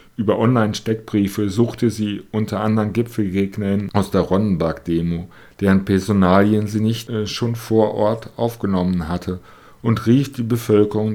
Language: German